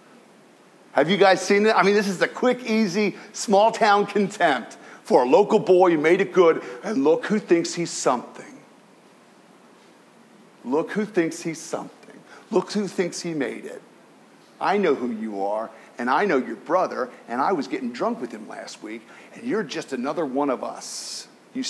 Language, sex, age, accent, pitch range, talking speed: English, male, 50-69, American, 160-215 Hz, 185 wpm